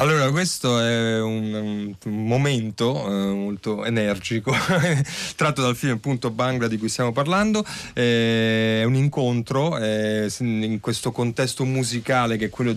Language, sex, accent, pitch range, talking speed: Italian, male, native, 100-125 Hz, 140 wpm